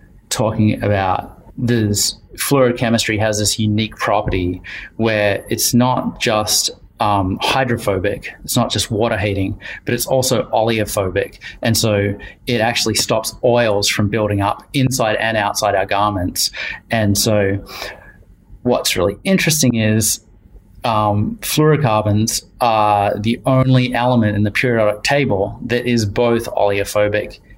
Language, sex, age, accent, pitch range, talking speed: English, male, 30-49, Australian, 105-120 Hz, 125 wpm